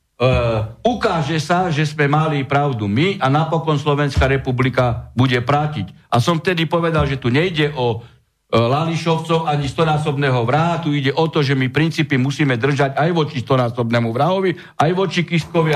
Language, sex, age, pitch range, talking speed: Slovak, male, 60-79, 135-180 Hz, 165 wpm